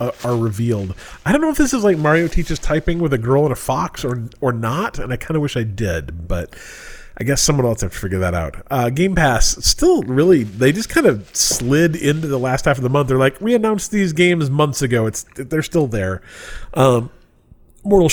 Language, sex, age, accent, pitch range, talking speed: English, male, 30-49, American, 115-160 Hz, 230 wpm